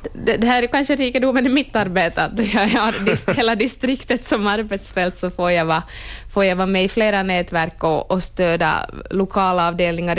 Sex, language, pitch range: female, Swedish, 175-220 Hz